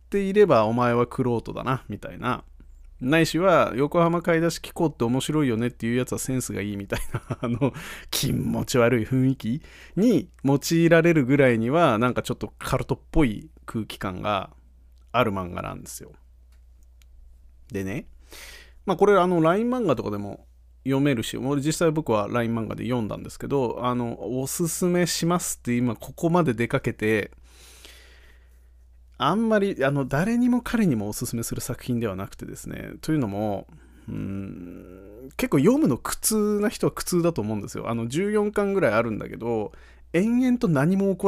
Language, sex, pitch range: Japanese, male, 100-165 Hz